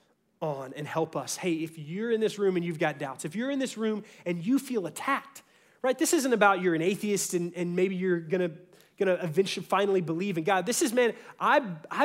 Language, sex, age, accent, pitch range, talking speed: English, male, 20-39, American, 155-210 Hz, 225 wpm